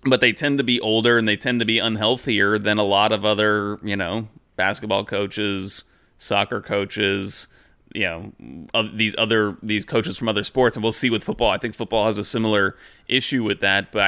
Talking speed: 200 wpm